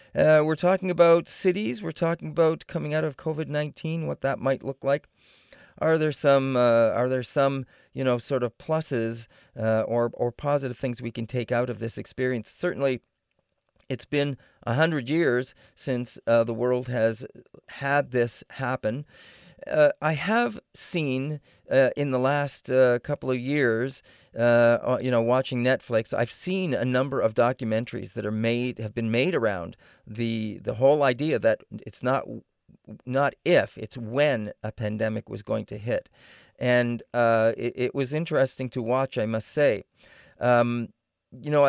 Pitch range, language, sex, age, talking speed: 115-145 Hz, English, male, 40-59, 165 wpm